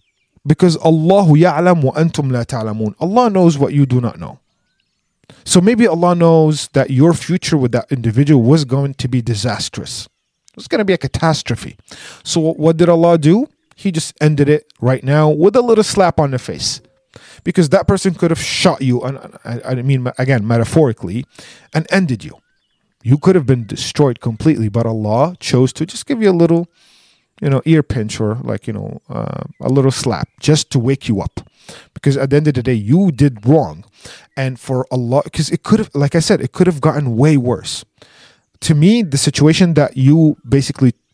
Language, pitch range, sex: English, 125-165 Hz, male